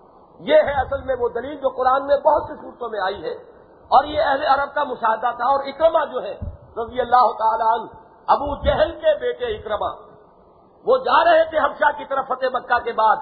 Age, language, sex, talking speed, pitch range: 50-69, English, male, 205 wpm, 230-295 Hz